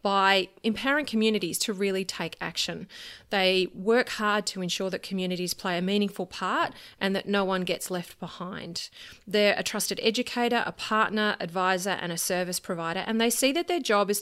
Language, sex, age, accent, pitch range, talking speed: English, female, 30-49, Australian, 185-225 Hz, 180 wpm